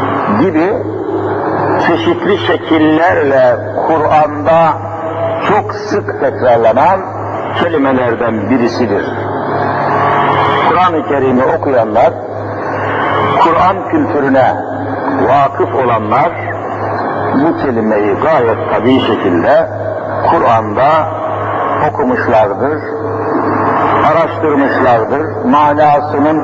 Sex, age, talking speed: male, 60-79, 55 wpm